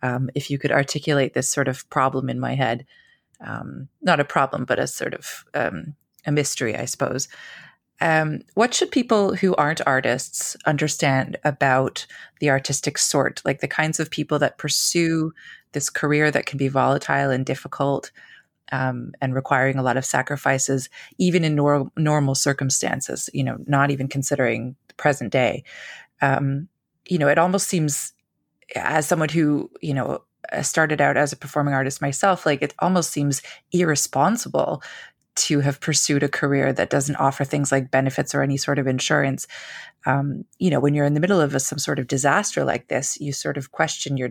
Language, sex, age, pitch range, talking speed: English, female, 30-49, 135-155 Hz, 175 wpm